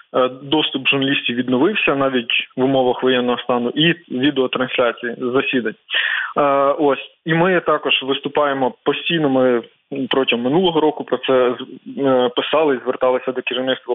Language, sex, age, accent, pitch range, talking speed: Ukrainian, male, 20-39, native, 130-150 Hz, 115 wpm